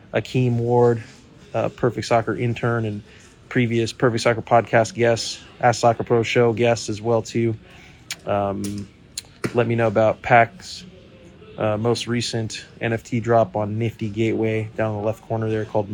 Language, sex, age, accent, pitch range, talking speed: English, male, 30-49, American, 110-130 Hz, 150 wpm